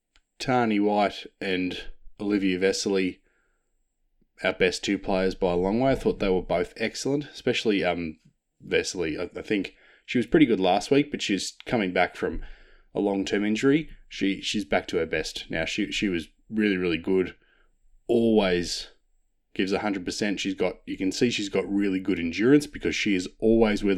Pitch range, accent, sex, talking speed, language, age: 95-110 Hz, Australian, male, 180 wpm, English, 20-39